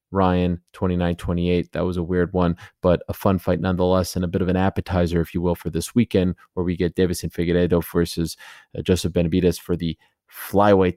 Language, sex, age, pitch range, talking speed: English, male, 30-49, 85-95 Hz, 195 wpm